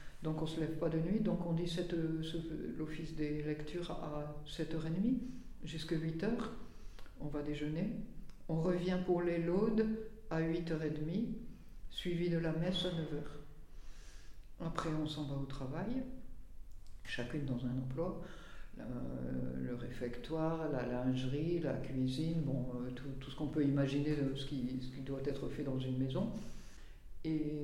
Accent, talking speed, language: French, 155 wpm, French